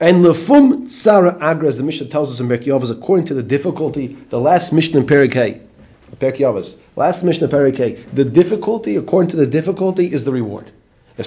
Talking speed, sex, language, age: 165 wpm, male, English, 30-49